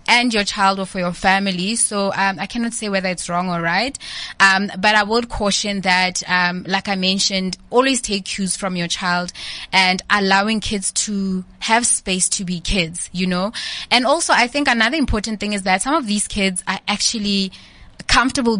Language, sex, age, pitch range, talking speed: English, female, 20-39, 190-225 Hz, 195 wpm